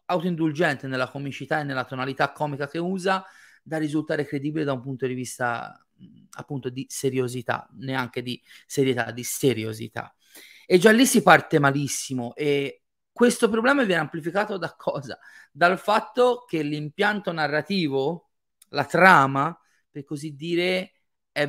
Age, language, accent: 30-49, Italian, native